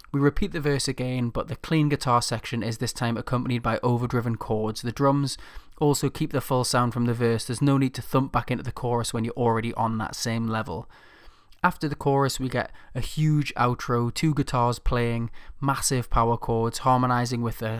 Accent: British